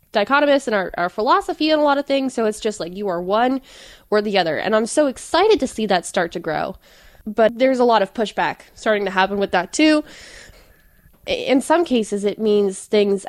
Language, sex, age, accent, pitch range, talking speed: English, female, 10-29, American, 185-225 Hz, 215 wpm